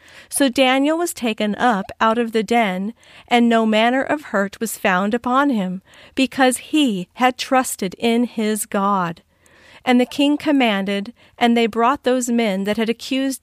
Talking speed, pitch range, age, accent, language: 165 wpm, 200-255 Hz, 40-59, American, English